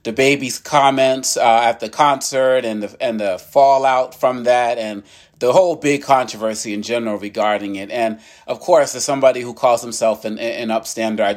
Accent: American